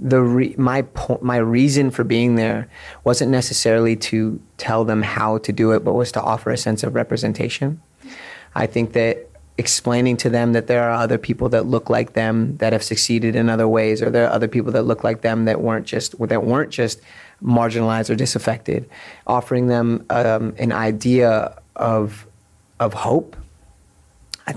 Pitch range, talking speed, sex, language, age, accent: 110-125 Hz, 180 wpm, male, English, 30-49, American